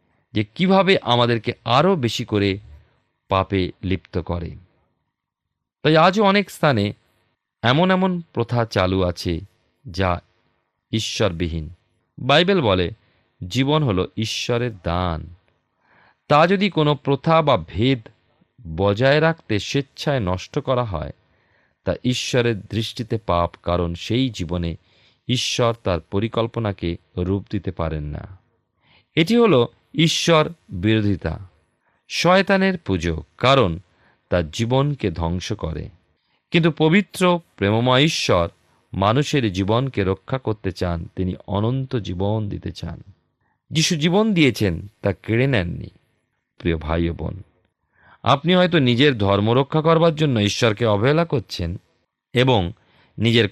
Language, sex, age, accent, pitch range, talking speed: Bengali, male, 40-59, native, 90-130 Hz, 110 wpm